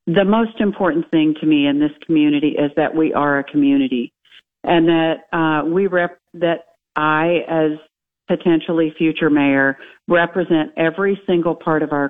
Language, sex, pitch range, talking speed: English, female, 150-175 Hz, 160 wpm